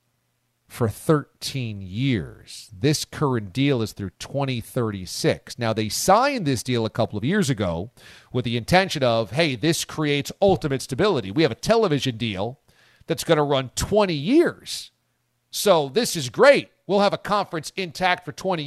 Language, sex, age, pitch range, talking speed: English, male, 40-59, 115-145 Hz, 160 wpm